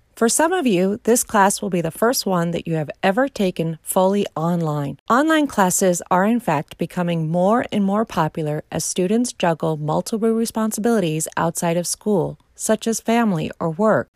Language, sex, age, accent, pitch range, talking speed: English, female, 40-59, American, 165-225 Hz, 175 wpm